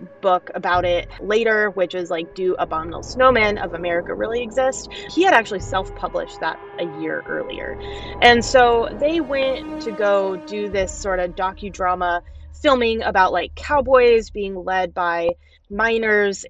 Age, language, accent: 20-39, English, American